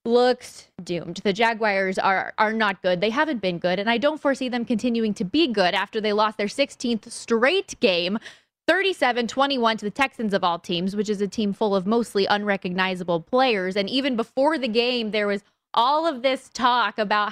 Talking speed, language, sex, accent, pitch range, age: 200 wpm, English, female, American, 205-260 Hz, 20-39